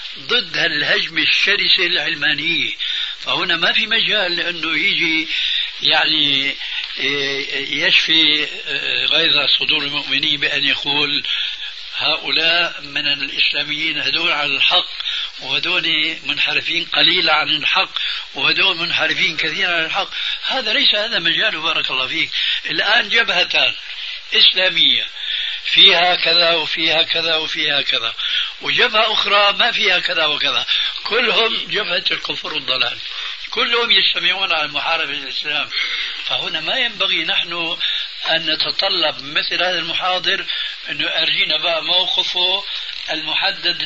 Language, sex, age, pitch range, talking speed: Arabic, male, 60-79, 150-190 Hz, 105 wpm